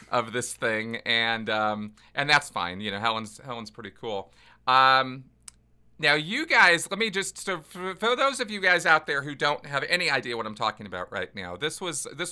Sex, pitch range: male, 105-145 Hz